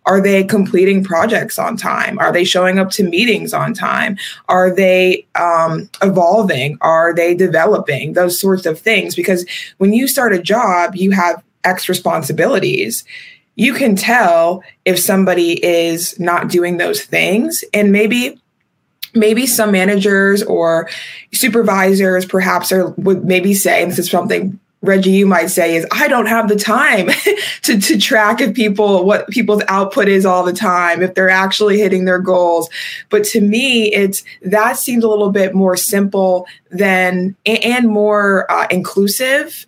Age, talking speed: 20-39, 155 wpm